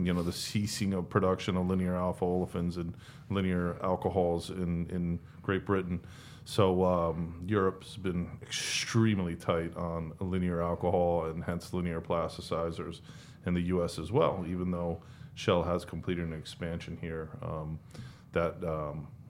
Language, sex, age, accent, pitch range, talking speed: English, male, 30-49, American, 85-100 Hz, 145 wpm